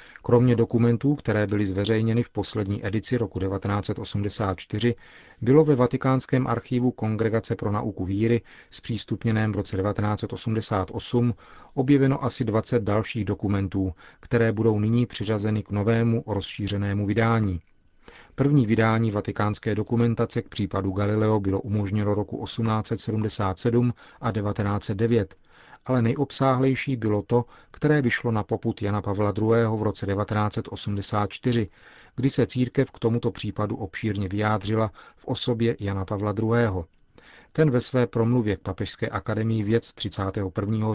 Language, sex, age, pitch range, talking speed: Czech, male, 40-59, 105-120 Hz, 125 wpm